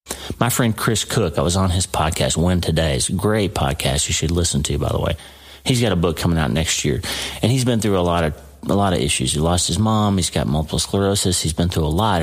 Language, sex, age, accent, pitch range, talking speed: English, male, 40-59, American, 75-105 Hz, 255 wpm